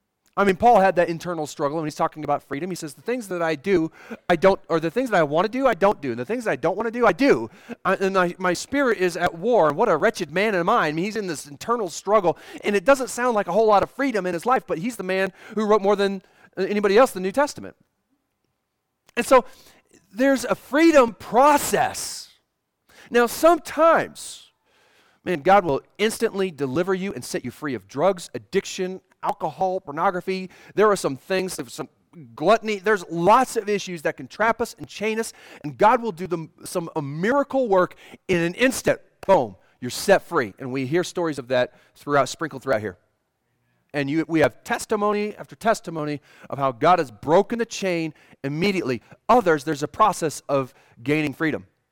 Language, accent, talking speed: English, American, 210 wpm